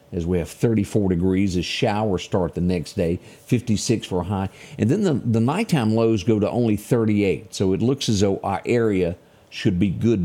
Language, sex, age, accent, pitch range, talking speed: English, male, 50-69, American, 90-120 Hz, 205 wpm